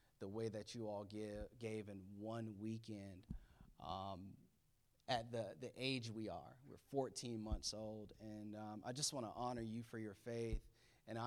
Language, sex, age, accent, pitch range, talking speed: English, male, 30-49, American, 110-125 Hz, 175 wpm